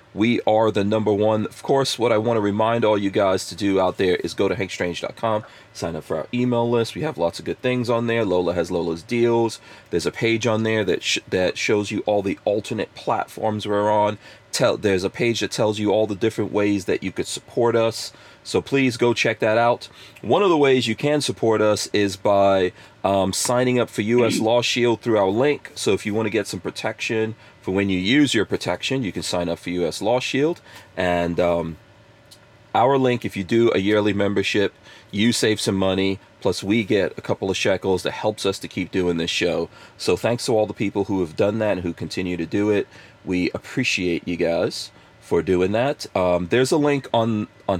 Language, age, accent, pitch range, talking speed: English, 30-49, American, 95-115 Hz, 225 wpm